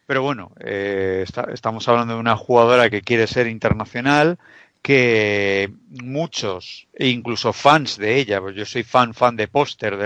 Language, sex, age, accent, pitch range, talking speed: Spanish, male, 50-69, Spanish, 105-130 Hz, 150 wpm